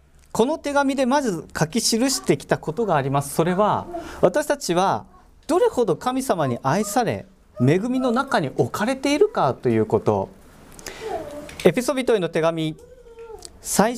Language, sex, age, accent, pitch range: Japanese, male, 40-59, native, 150-250 Hz